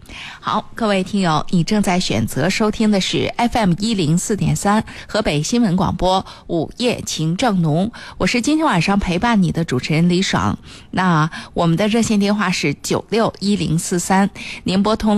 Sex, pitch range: female, 165-205 Hz